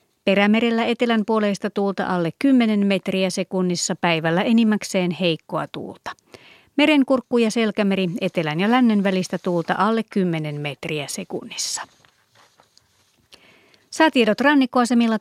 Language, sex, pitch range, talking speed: Finnish, female, 180-230 Hz, 105 wpm